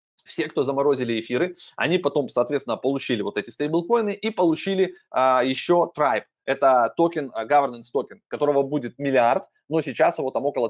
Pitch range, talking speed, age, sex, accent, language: 125-180 Hz, 155 wpm, 20-39, male, native, Russian